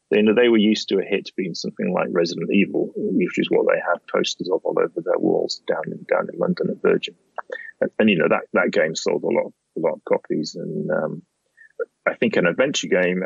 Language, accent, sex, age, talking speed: English, British, male, 30-49, 240 wpm